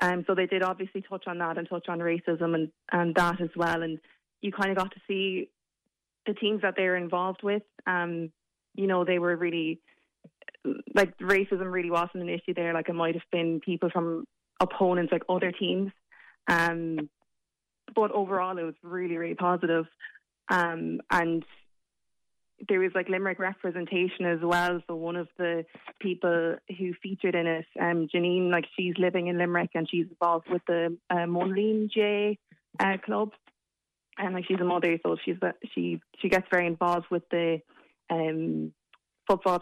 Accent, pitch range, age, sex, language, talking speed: Irish, 170-185 Hz, 20-39, female, English, 175 wpm